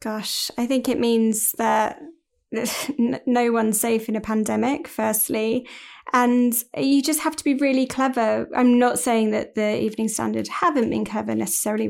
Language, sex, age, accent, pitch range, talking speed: English, female, 10-29, British, 220-255 Hz, 160 wpm